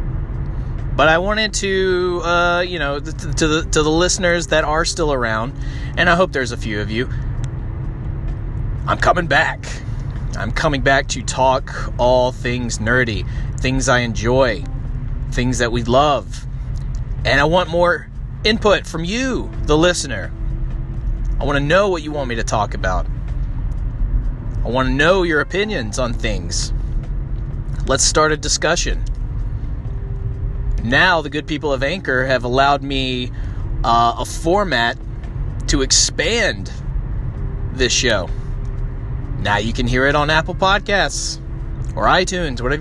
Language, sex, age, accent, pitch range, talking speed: English, male, 30-49, American, 120-155 Hz, 140 wpm